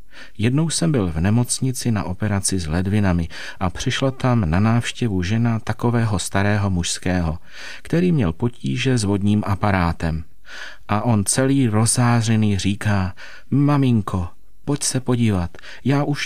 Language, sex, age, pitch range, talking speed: Czech, male, 40-59, 95-120 Hz, 130 wpm